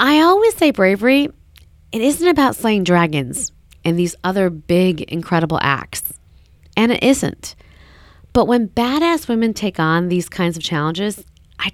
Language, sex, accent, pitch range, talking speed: English, female, American, 155-235 Hz, 150 wpm